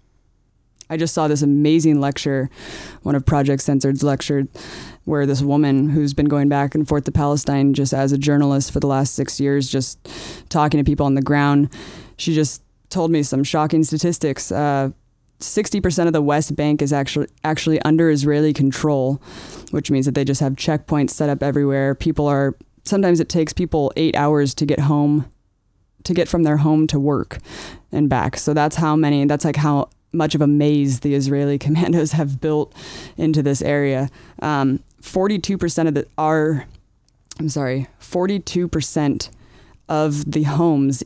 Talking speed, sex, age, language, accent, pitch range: 170 wpm, female, 20-39, English, American, 140-155 Hz